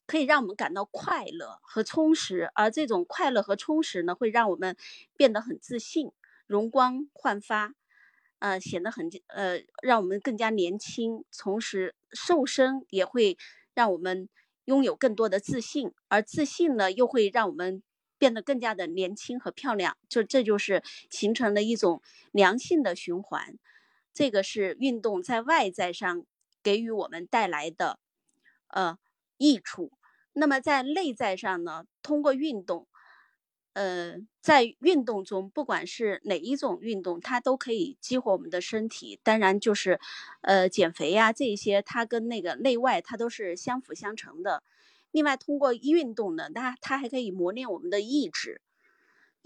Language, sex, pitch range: Chinese, female, 200-290 Hz